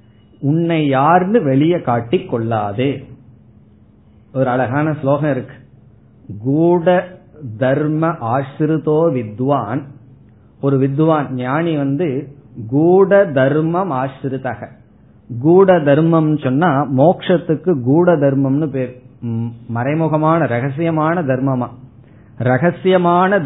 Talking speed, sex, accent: 60 wpm, male, native